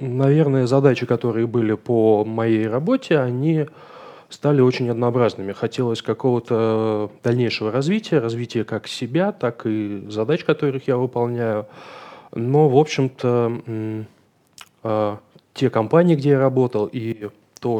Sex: male